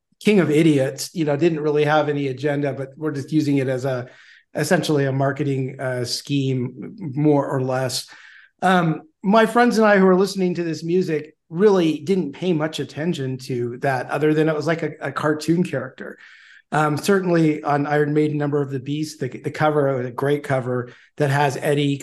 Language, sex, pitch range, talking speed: English, male, 135-155 Hz, 195 wpm